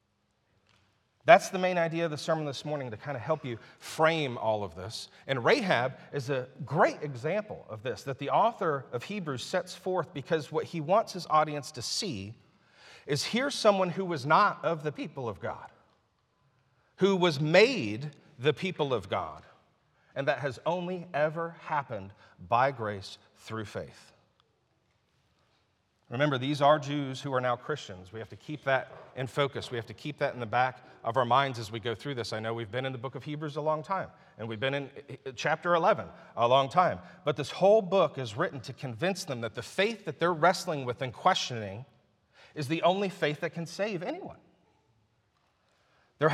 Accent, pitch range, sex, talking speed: American, 120-170 Hz, male, 190 wpm